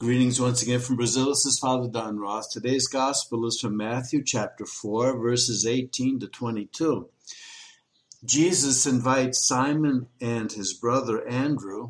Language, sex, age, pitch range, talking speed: English, male, 60-79, 115-140 Hz, 140 wpm